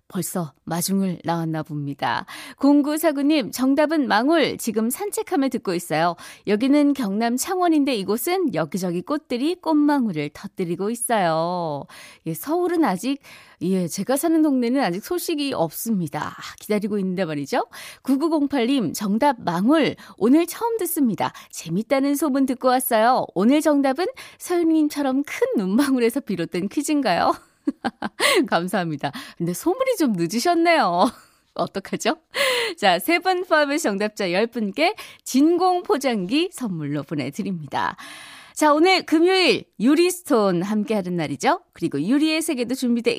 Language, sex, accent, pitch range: Korean, female, native, 190-310 Hz